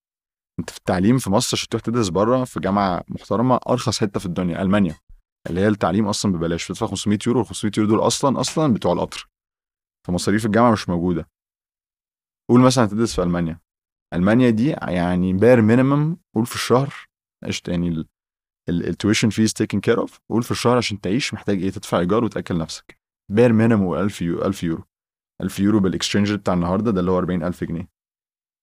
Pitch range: 90-115 Hz